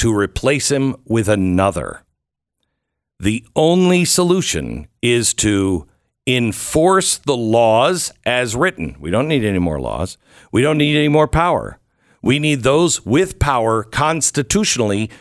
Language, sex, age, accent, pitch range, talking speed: English, male, 50-69, American, 105-155 Hz, 130 wpm